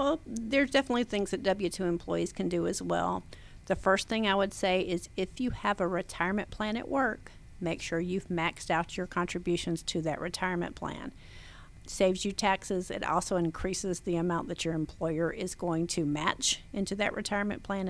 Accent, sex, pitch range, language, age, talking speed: American, female, 170-205 Hz, English, 50-69, 190 wpm